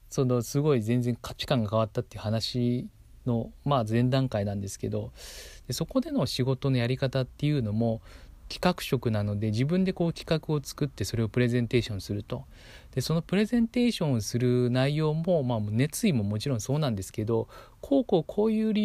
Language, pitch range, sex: Japanese, 110-170 Hz, male